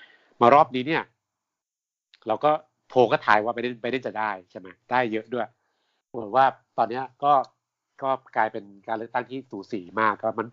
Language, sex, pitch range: Thai, male, 105-135 Hz